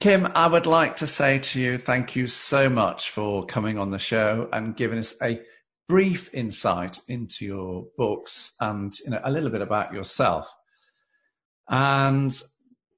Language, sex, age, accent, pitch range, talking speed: English, male, 50-69, British, 100-135 Hz, 160 wpm